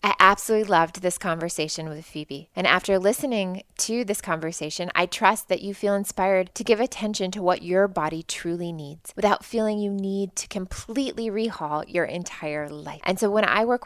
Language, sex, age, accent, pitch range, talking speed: English, female, 20-39, American, 175-205 Hz, 185 wpm